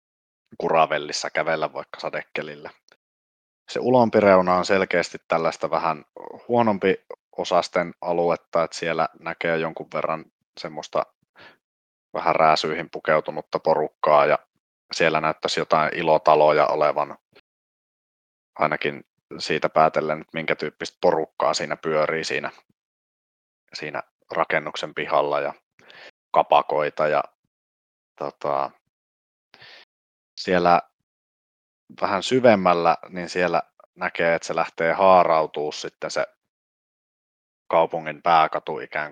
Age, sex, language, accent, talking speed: 30-49, male, Finnish, native, 95 wpm